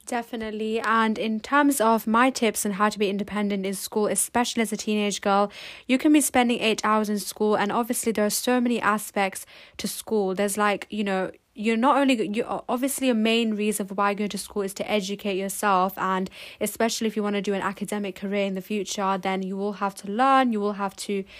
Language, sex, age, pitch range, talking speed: English, female, 10-29, 200-225 Hz, 225 wpm